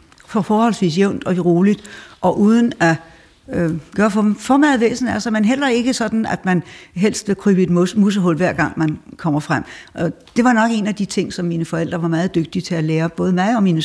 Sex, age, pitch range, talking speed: female, 60-79, 165-210 Hz, 230 wpm